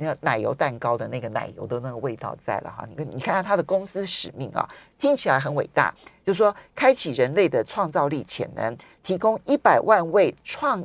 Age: 50-69